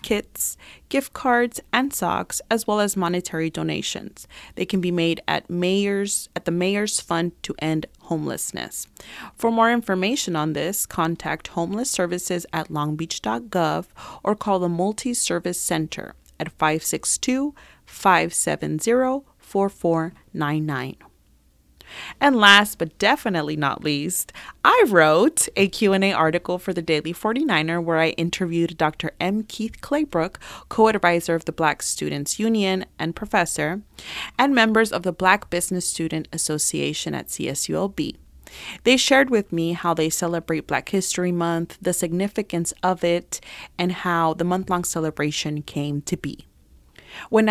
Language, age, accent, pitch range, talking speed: English, 30-49, American, 160-205 Hz, 130 wpm